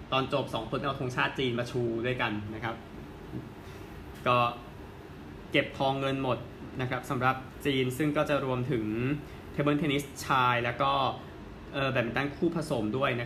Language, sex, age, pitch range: Thai, male, 20-39, 115-140 Hz